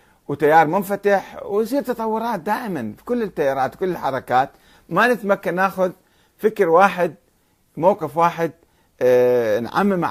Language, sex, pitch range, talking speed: Arabic, male, 120-195 Hz, 105 wpm